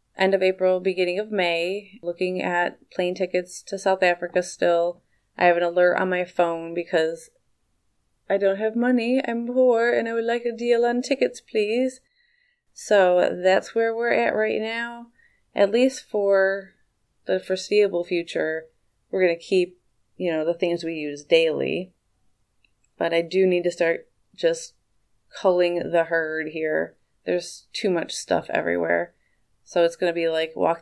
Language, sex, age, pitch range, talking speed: English, female, 30-49, 170-210 Hz, 165 wpm